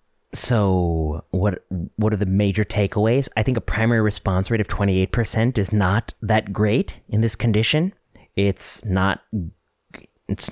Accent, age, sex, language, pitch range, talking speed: American, 30-49, male, English, 95-115 Hz, 145 wpm